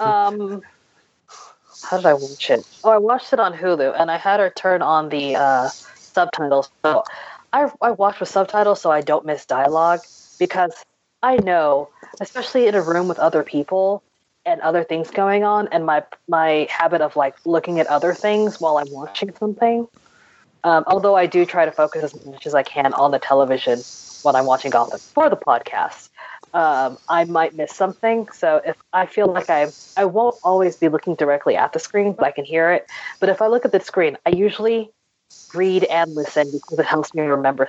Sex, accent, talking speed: female, American, 200 wpm